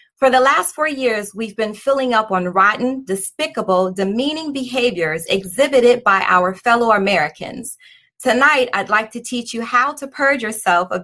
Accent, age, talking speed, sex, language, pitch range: American, 30-49, 165 wpm, female, English, 195-255 Hz